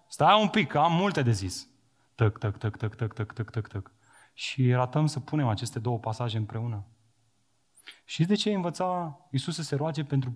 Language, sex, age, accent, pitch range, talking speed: Romanian, male, 30-49, native, 120-160 Hz, 195 wpm